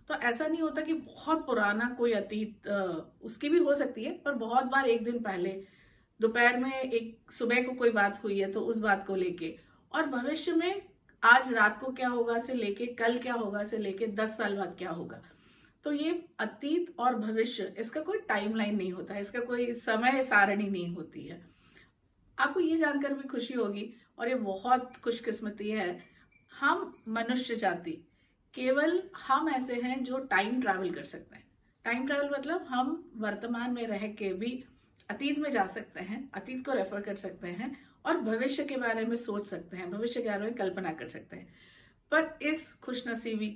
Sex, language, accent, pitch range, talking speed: female, Hindi, native, 205-260 Hz, 185 wpm